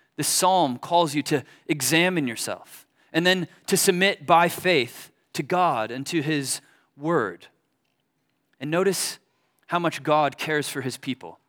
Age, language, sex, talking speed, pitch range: 30-49, English, male, 145 wpm, 150-185 Hz